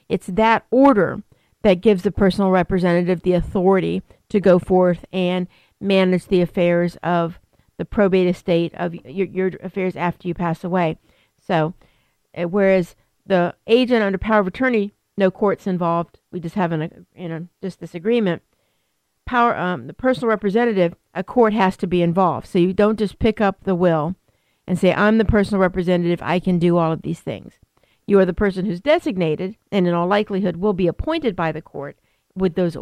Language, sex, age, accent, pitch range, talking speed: English, female, 50-69, American, 175-205 Hz, 185 wpm